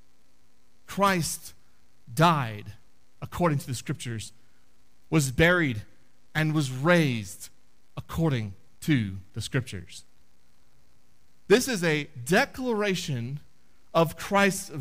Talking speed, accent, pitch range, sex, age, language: 85 wpm, American, 120-190 Hz, male, 40-59, English